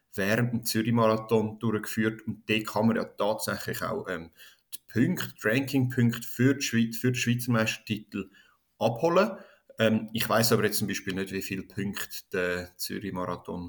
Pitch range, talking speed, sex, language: 105-125 Hz, 155 wpm, male, German